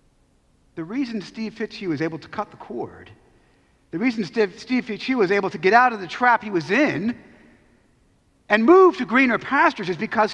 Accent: American